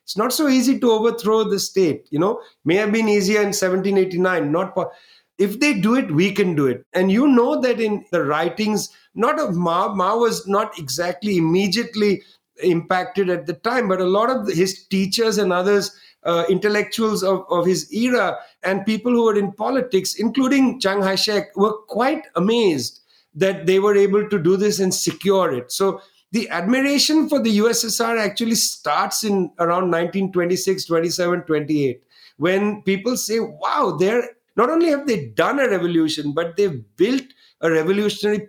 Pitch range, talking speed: 180-230 Hz, 175 wpm